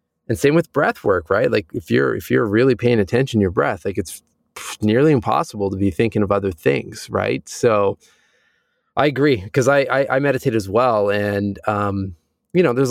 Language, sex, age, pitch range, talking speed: English, male, 20-39, 100-125 Hz, 200 wpm